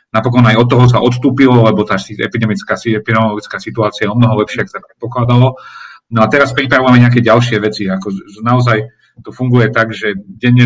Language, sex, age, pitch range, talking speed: Slovak, male, 40-59, 110-125 Hz, 190 wpm